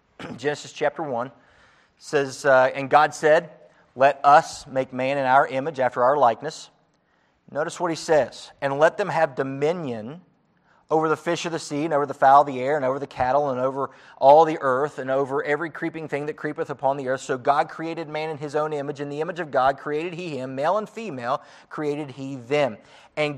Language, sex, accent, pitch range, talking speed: English, male, American, 130-160 Hz, 215 wpm